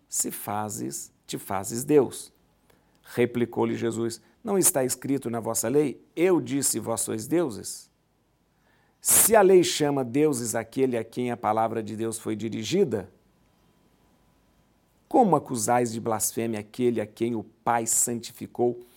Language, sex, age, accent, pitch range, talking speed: Portuguese, male, 50-69, Brazilian, 115-150 Hz, 135 wpm